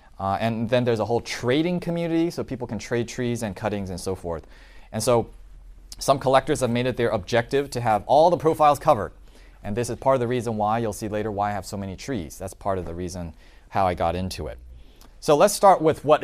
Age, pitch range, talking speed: 30-49, 95-130 Hz, 240 wpm